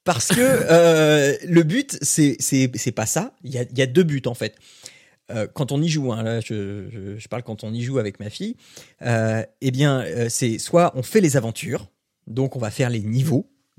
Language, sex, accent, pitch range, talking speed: French, male, French, 115-160 Hz, 235 wpm